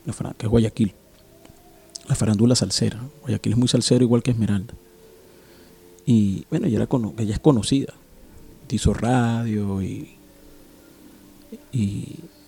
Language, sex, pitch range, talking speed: Spanish, male, 105-135 Hz, 120 wpm